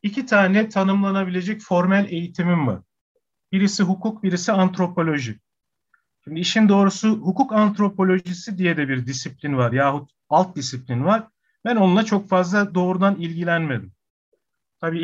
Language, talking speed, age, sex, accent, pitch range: Turkish, 125 wpm, 40-59, male, native, 150-210 Hz